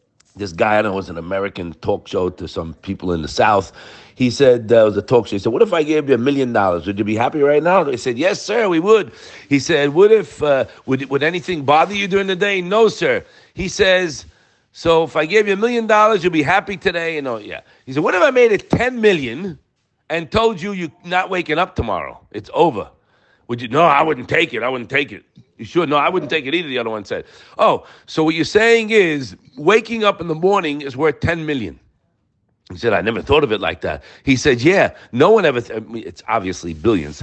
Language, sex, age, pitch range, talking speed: English, male, 50-69, 140-225 Hz, 250 wpm